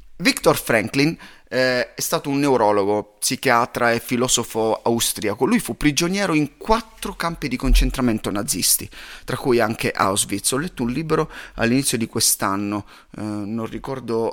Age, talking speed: 30-49, 140 wpm